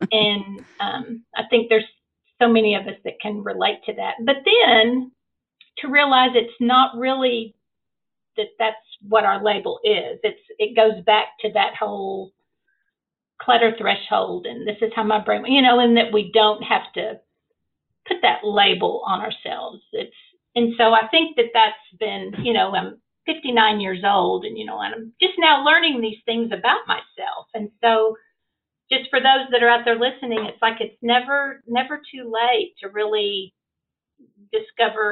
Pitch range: 215-265 Hz